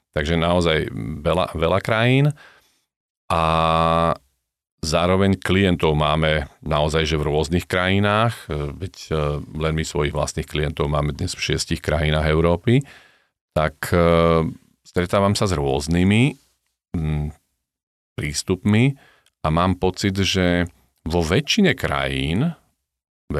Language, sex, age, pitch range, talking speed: Slovak, male, 40-59, 75-95 Hz, 105 wpm